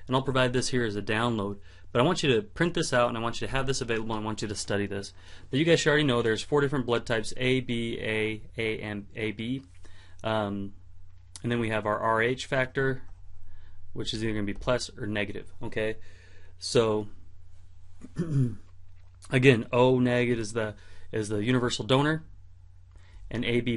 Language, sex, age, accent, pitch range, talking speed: English, male, 30-49, American, 95-125 Hz, 195 wpm